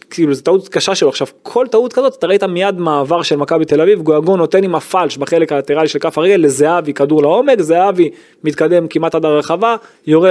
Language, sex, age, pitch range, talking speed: Hebrew, male, 20-39, 145-185 Hz, 205 wpm